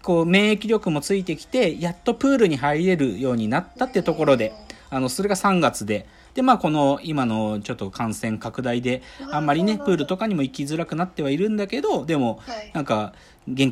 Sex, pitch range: male, 120-195 Hz